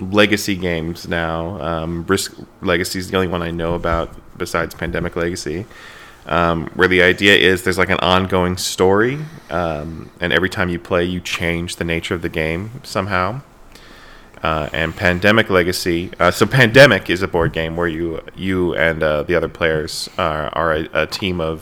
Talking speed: 180 wpm